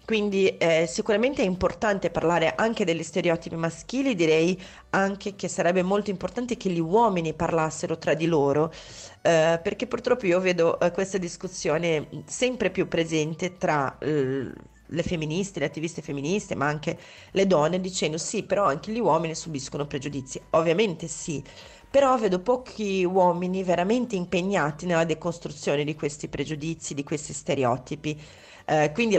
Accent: native